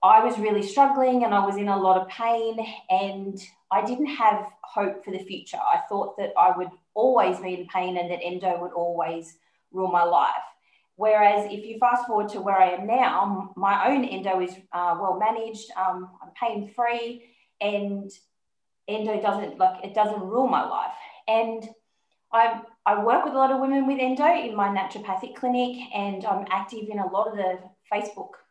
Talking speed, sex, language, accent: 190 wpm, female, English, Australian